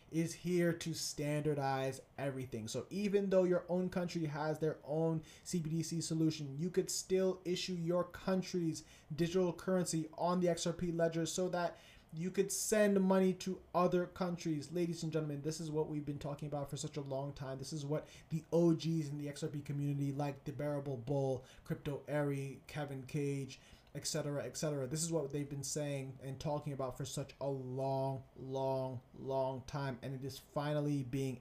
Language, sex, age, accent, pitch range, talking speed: English, male, 20-39, American, 140-170 Hz, 175 wpm